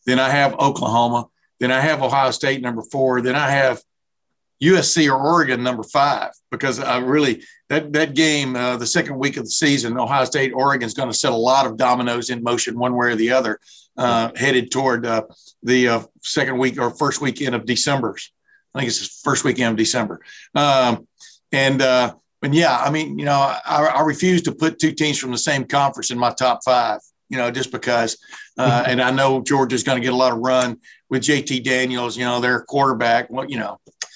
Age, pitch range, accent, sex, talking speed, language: 50-69, 125-145 Hz, American, male, 215 wpm, English